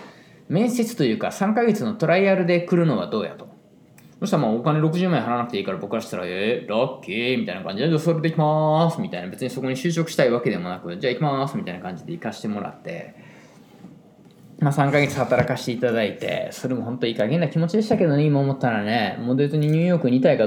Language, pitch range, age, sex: Japanese, 115-160 Hz, 20-39, male